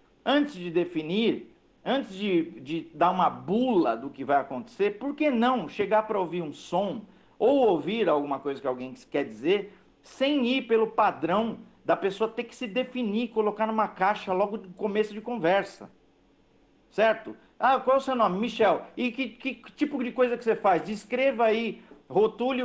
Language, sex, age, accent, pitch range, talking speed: Portuguese, male, 50-69, Brazilian, 195-250 Hz, 175 wpm